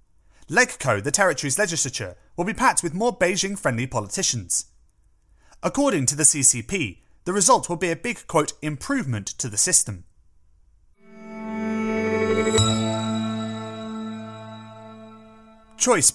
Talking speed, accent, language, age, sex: 100 wpm, British, English, 30-49, male